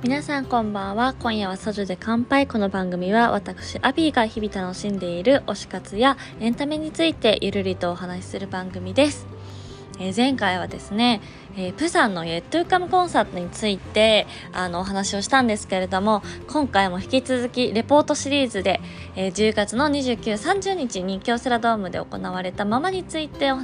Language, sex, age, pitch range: Japanese, female, 20-39, 190-255 Hz